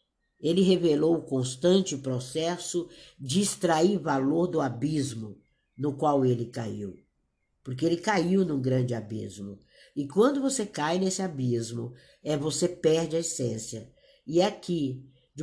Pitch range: 130-175 Hz